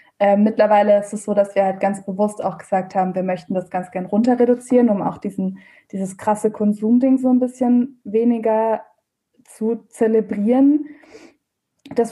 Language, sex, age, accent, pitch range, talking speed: German, female, 20-39, German, 195-235 Hz, 160 wpm